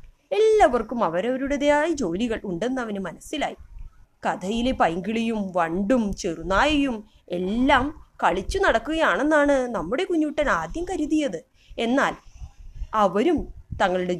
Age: 20-39